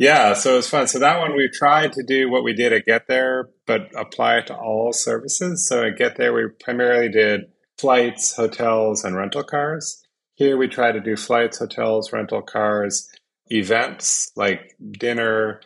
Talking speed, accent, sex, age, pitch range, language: 185 wpm, American, male, 30-49, 100-120 Hz, English